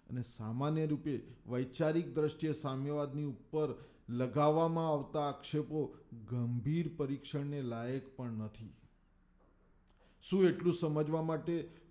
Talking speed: 75 wpm